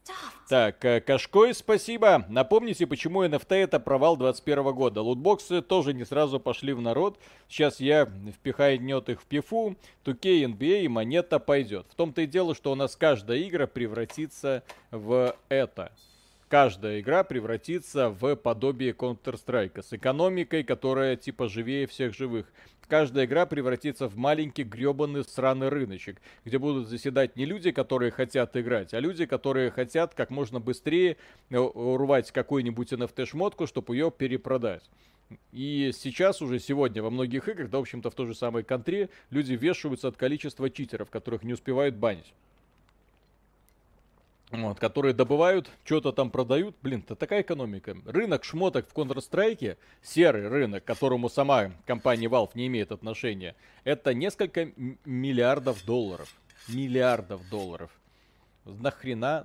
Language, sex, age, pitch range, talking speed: Russian, male, 40-59, 120-145 Hz, 135 wpm